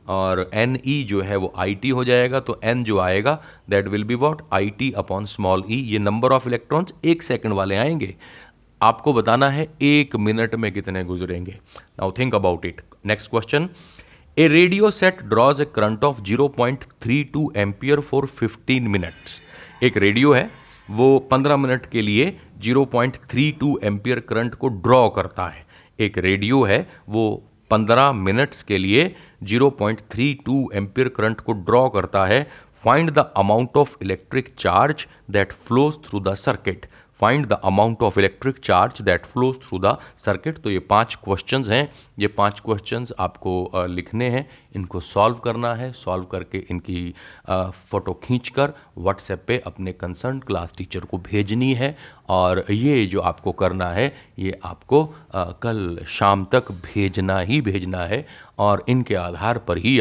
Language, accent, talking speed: Hindi, native, 160 wpm